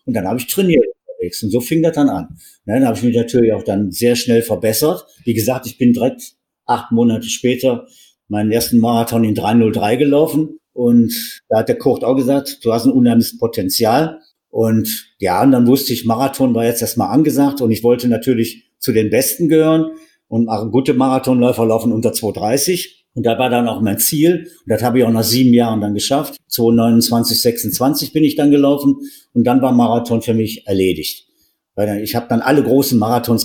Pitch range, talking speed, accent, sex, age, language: 115-140 Hz, 200 wpm, German, male, 50-69, German